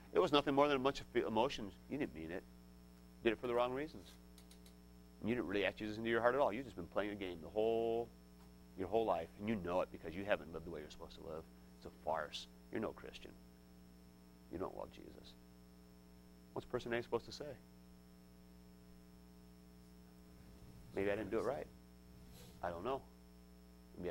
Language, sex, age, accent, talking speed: English, male, 30-49, American, 205 wpm